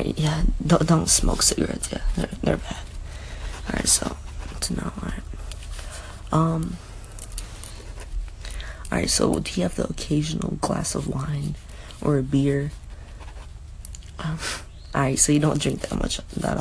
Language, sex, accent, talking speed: English, female, American, 135 wpm